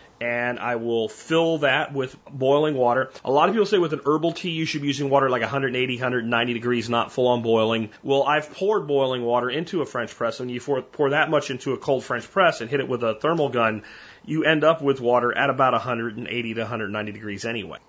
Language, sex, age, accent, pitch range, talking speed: English, male, 30-49, American, 120-150 Hz, 230 wpm